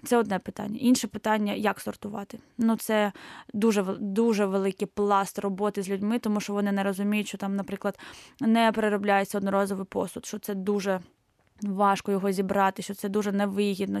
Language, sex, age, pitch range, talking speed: Ukrainian, female, 20-39, 200-220 Hz, 165 wpm